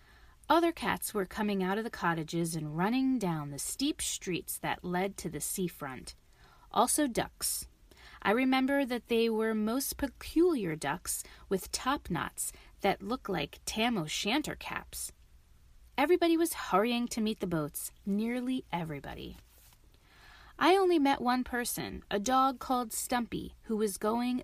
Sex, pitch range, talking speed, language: female, 185-265 Hz, 145 wpm, English